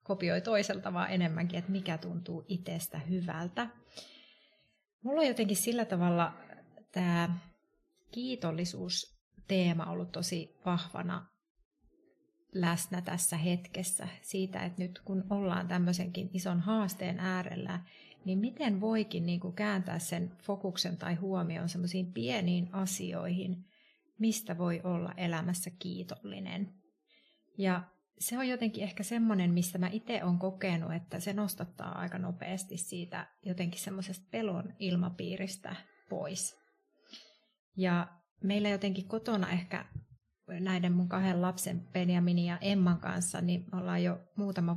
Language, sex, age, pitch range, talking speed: Finnish, female, 30-49, 175-200 Hz, 120 wpm